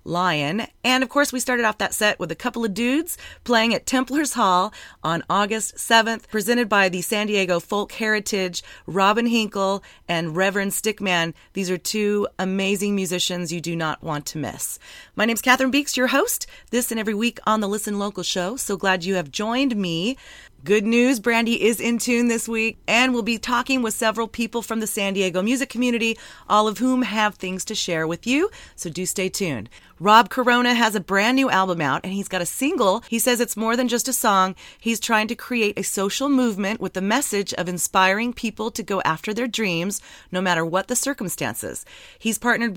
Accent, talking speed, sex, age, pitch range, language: American, 205 wpm, female, 30-49, 190-235 Hz, English